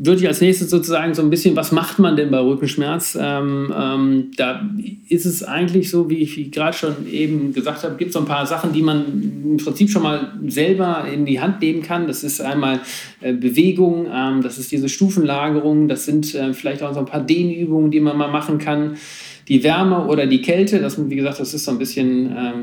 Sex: male